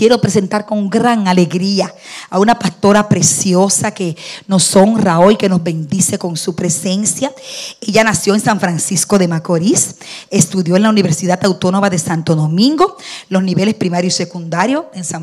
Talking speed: 160 wpm